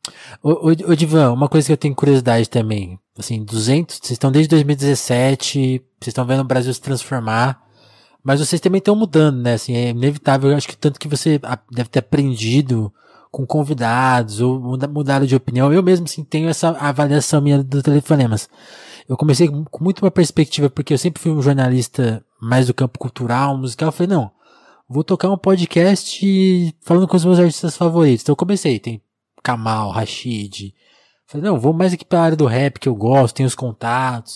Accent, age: Brazilian, 20-39